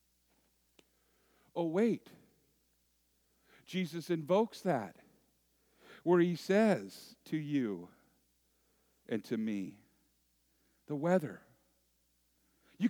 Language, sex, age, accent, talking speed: English, male, 50-69, American, 75 wpm